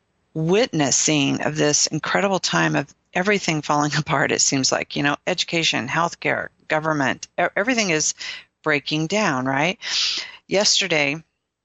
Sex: female